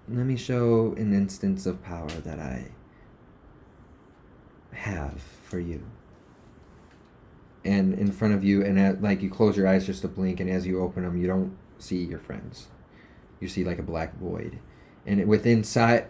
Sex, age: male, 30-49